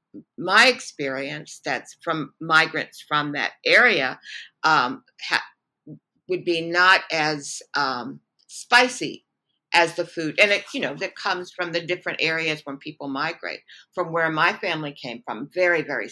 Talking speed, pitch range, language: 150 wpm, 150-185 Hz, English